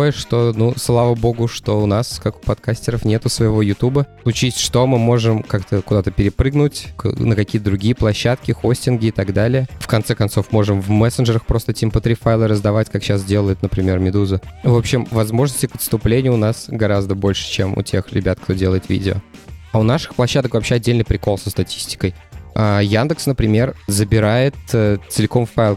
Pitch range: 100-120 Hz